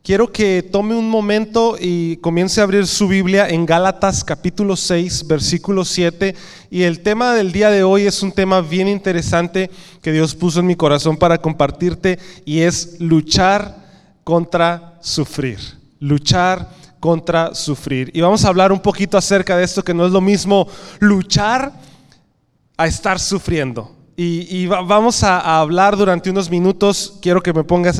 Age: 30-49